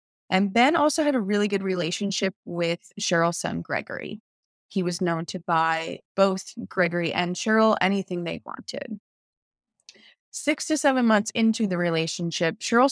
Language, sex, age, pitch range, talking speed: English, female, 20-39, 175-210 Hz, 150 wpm